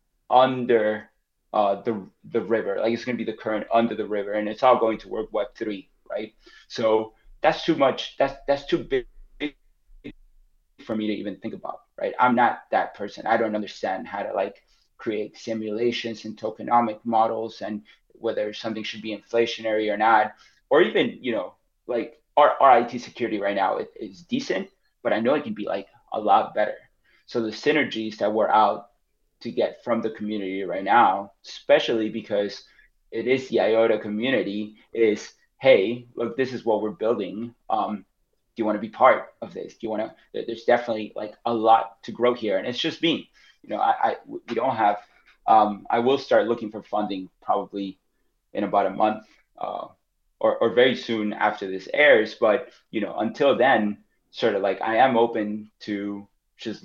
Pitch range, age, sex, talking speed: 105-120 Hz, 30-49, male, 190 wpm